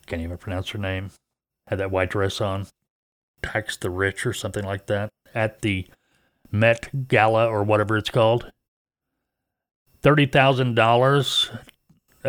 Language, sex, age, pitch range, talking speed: English, male, 40-59, 95-130 Hz, 125 wpm